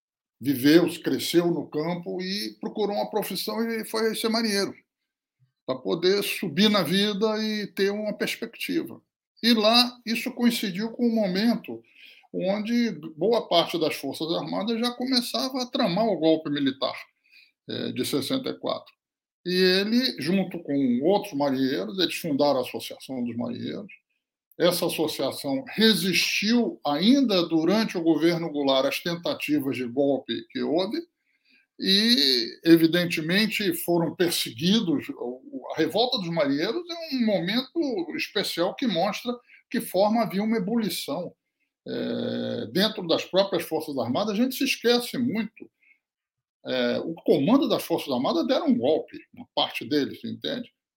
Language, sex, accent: Portuguese, male, Brazilian